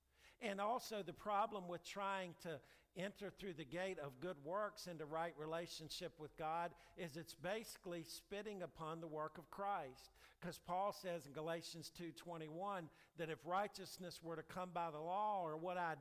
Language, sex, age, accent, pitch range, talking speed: English, male, 50-69, American, 130-175 Hz, 175 wpm